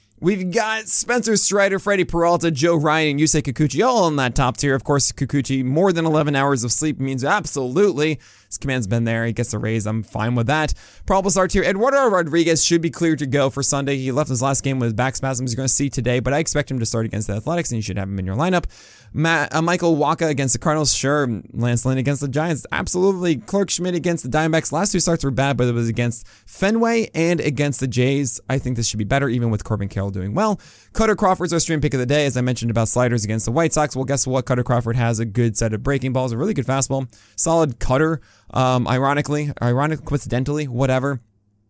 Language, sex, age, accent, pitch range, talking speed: English, male, 20-39, American, 120-160 Hz, 240 wpm